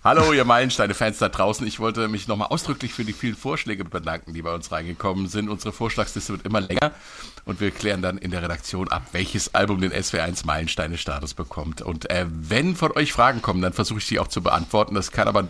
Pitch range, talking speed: 95-125 Hz, 215 wpm